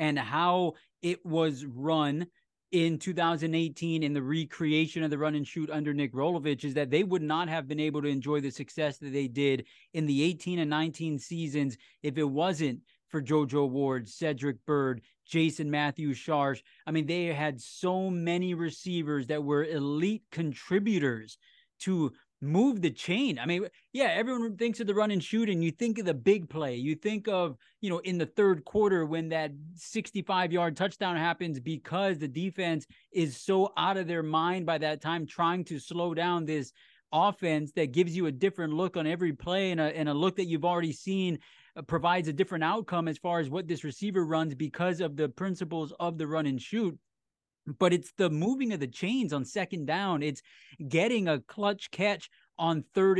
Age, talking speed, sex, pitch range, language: 20-39, 190 wpm, male, 150-180 Hz, English